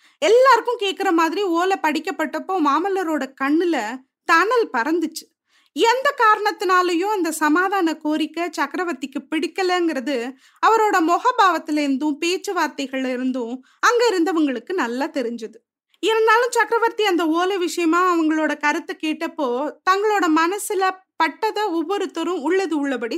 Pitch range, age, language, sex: 295-385 Hz, 20-39, Tamil, female